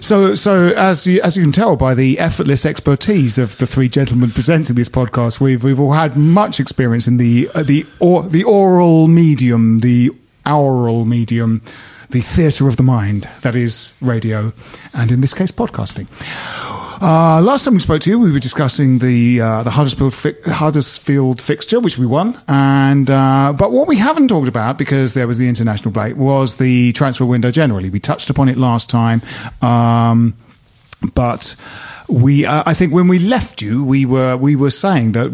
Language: English